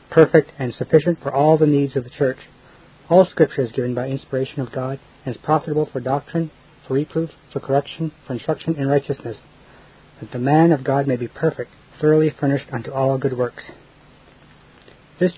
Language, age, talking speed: English, 40-59, 180 wpm